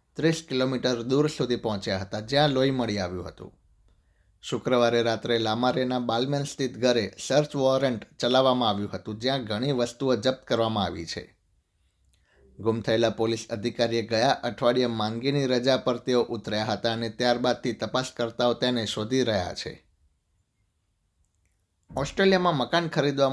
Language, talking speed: Gujarati, 130 wpm